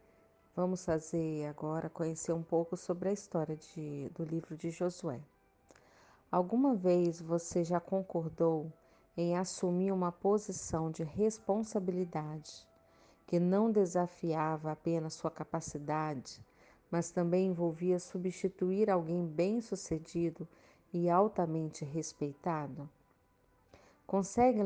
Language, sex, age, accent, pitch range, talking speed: Portuguese, female, 40-59, Brazilian, 160-180 Hz, 95 wpm